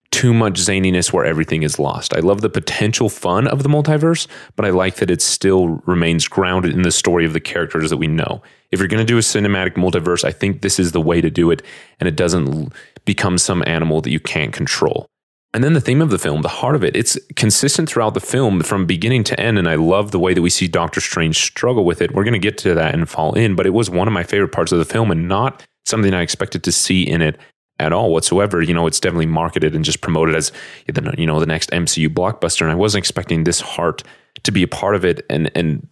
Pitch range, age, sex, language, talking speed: 85-110 Hz, 30-49, male, English, 255 wpm